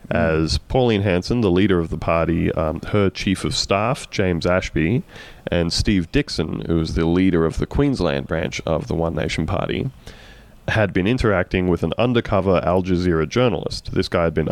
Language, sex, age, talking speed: English, male, 30-49, 180 wpm